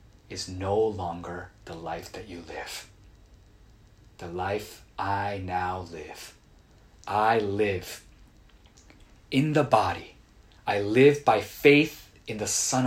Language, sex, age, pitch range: Korean, male, 30-49, 90-115 Hz